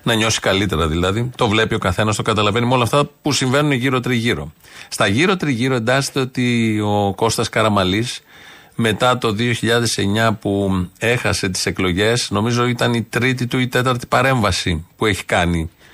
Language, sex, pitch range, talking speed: Greek, male, 100-135 Hz, 160 wpm